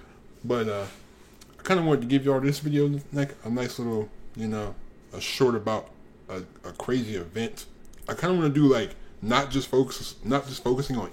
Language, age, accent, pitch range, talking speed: English, 20-39, American, 110-135 Hz, 210 wpm